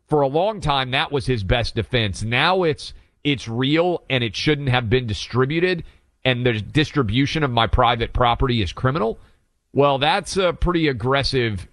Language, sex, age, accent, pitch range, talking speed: English, male, 40-59, American, 105-140 Hz, 170 wpm